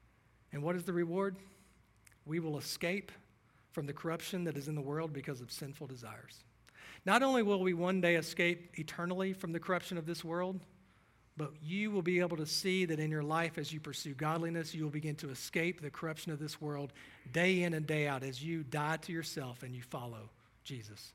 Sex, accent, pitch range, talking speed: male, American, 125-165 Hz, 205 wpm